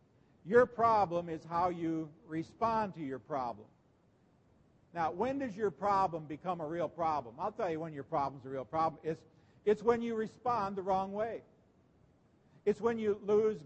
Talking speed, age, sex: 170 wpm, 50-69, male